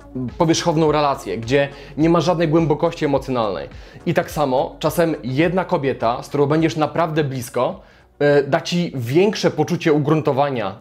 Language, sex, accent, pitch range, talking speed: Polish, male, native, 145-170 Hz, 135 wpm